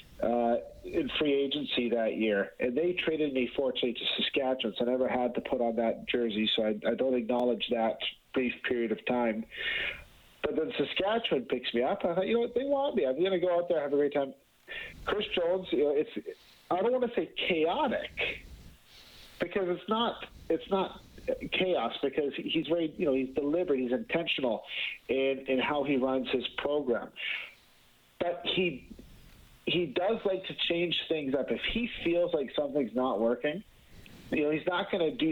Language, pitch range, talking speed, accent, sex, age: English, 120-170 Hz, 190 wpm, American, male, 40-59